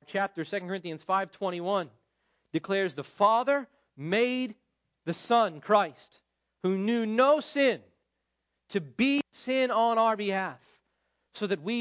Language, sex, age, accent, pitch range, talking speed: English, male, 40-59, American, 140-220 Hz, 120 wpm